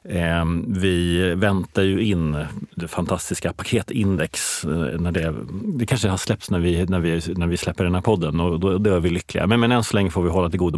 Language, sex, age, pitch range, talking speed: Swedish, male, 30-49, 90-110 Hz, 215 wpm